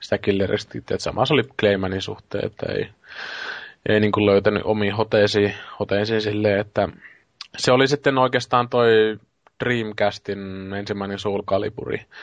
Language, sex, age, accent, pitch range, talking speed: Finnish, male, 20-39, native, 100-110 Hz, 120 wpm